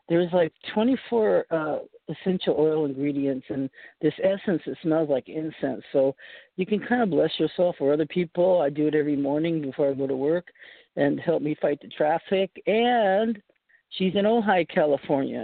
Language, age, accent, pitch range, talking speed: English, 50-69, American, 145-185 Hz, 175 wpm